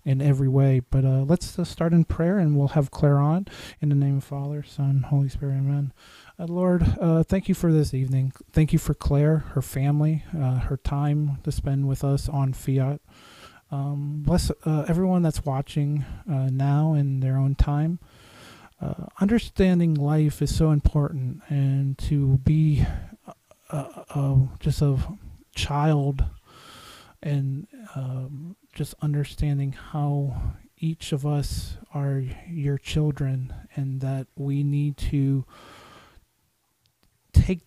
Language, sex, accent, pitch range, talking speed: English, male, American, 135-150 Hz, 140 wpm